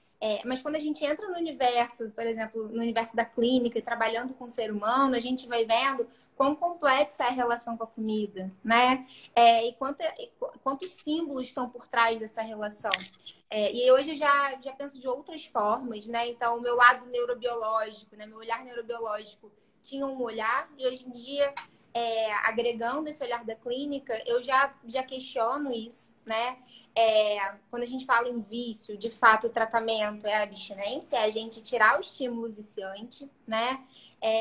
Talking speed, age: 175 wpm, 20-39